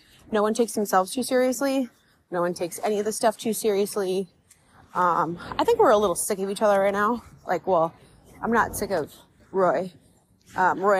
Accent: American